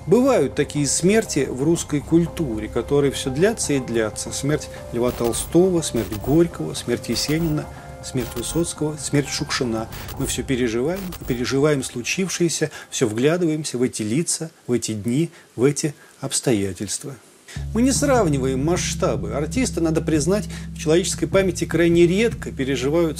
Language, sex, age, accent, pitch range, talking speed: Russian, male, 40-59, native, 130-170 Hz, 130 wpm